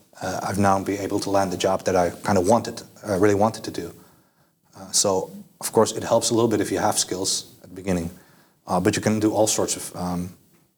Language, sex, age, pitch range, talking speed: Finnish, male, 30-49, 90-105 Hz, 245 wpm